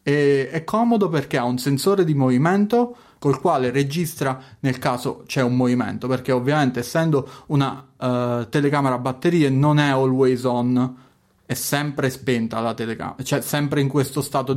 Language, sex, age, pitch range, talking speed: Italian, male, 30-49, 125-150 Hz, 150 wpm